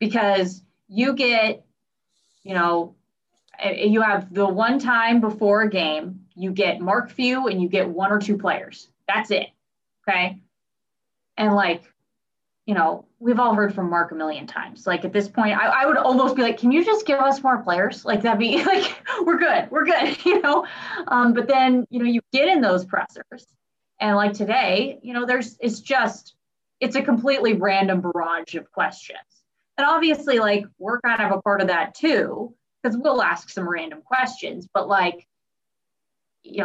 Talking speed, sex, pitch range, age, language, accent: 180 wpm, female, 190-270 Hz, 20-39, English, American